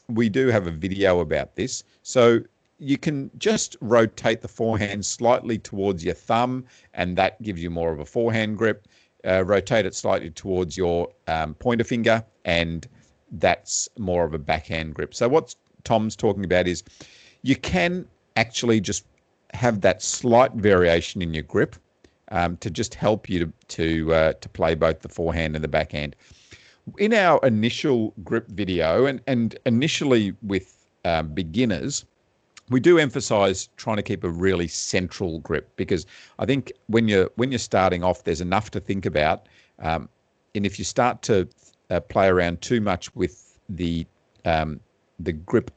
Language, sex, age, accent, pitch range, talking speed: English, male, 50-69, Australian, 85-115 Hz, 165 wpm